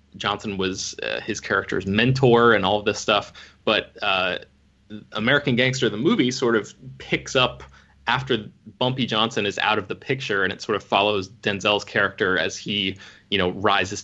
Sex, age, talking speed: male, 20-39, 175 wpm